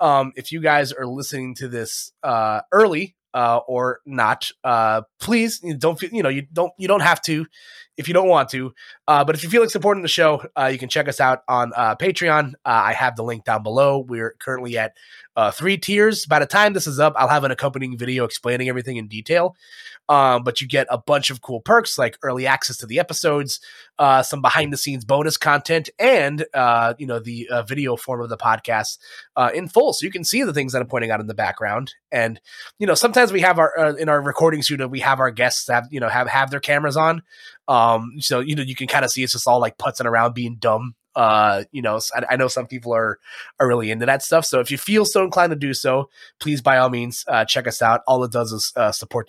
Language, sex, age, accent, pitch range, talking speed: English, male, 20-39, American, 125-160 Hz, 250 wpm